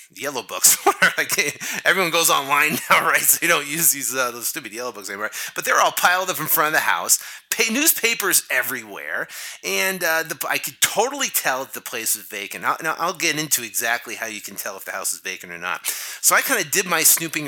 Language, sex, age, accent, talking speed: English, male, 30-49, American, 230 wpm